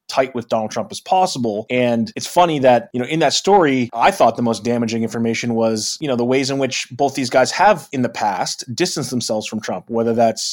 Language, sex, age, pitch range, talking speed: English, male, 20-39, 115-135 Hz, 235 wpm